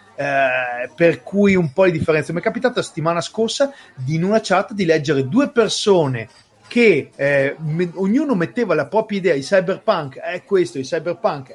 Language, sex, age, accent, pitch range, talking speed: Italian, male, 30-49, native, 155-215 Hz, 165 wpm